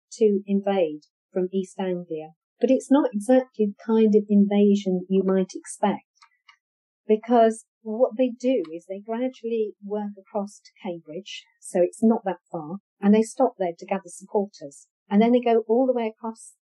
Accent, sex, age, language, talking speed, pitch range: British, female, 50-69, English, 170 wpm, 180-225 Hz